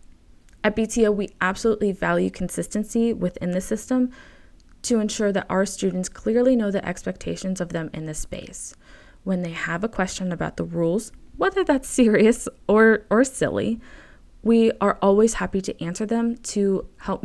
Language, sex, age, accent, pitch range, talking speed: English, female, 20-39, American, 180-230 Hz, 160 wpm